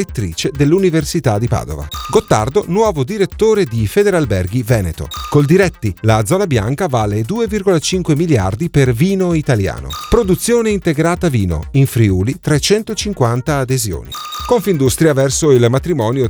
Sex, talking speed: male, 115 wpm